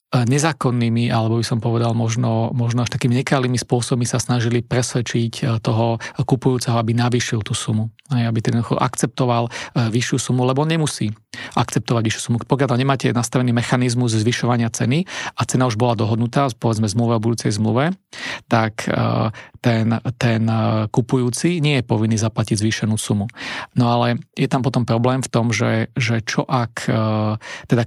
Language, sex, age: Slovak, male, 40-59